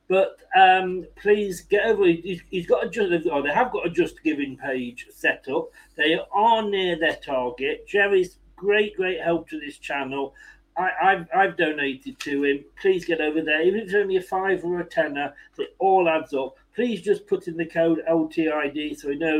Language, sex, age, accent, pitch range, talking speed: English, male, 40-59, British, 155-220 Hz, 200 wpm